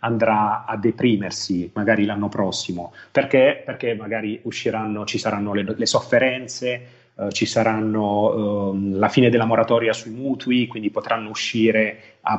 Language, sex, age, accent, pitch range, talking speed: Italian, male, 30-49, native, 105-125 Hz, 140 wpm